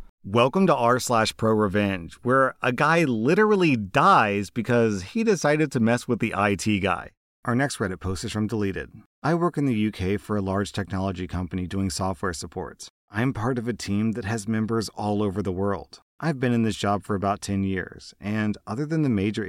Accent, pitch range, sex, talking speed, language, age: American, 100-130 Hz, male, 205 wpm, English, 30-49